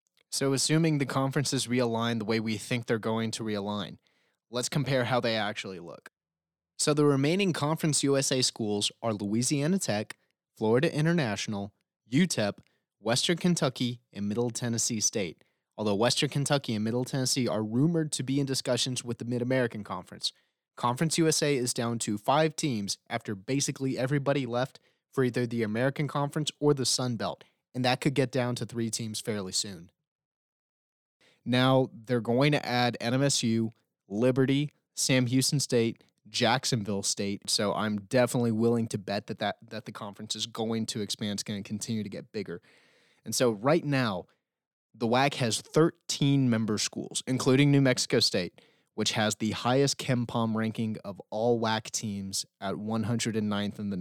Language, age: English, 30-49